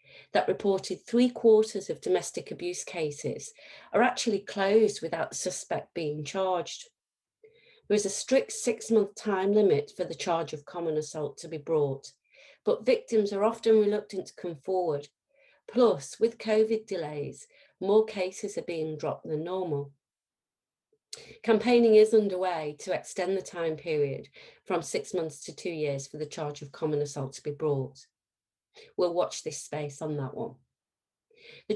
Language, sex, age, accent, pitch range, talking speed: English, female, 40-59, British, 150-220 Hz, 155 wpm